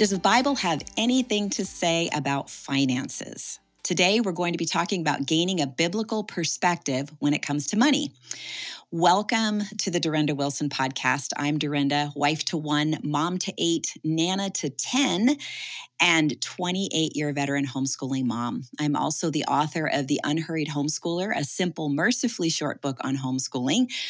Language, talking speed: English, 155 wpm